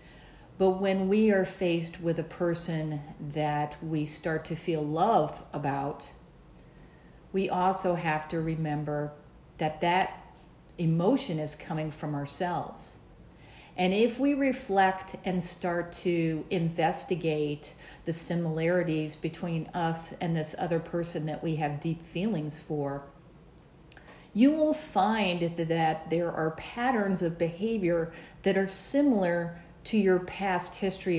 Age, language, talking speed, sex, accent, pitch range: 50-69, English, 125 wpm, female, American, 160-195 Hz